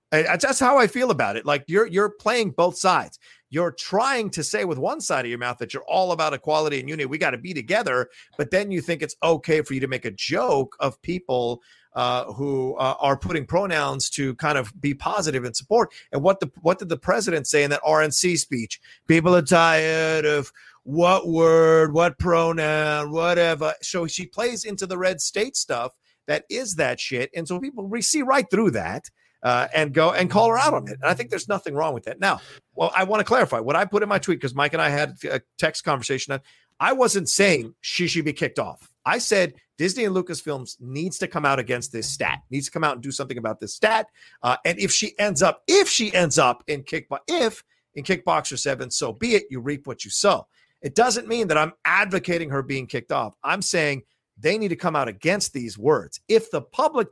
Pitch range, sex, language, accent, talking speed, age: 145-190 Hz, male, English, American, 230 wpm, 40-59